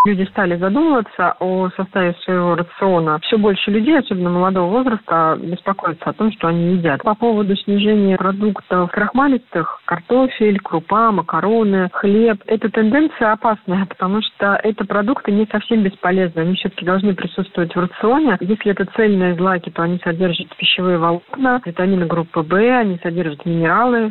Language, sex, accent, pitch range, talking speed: Russian, female, native, 180-215 Hz, 145 wpm